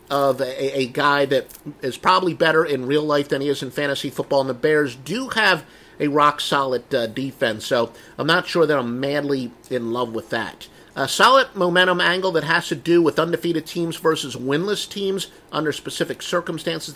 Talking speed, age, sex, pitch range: 190 wpm, 50-69, male, 145-185 Hz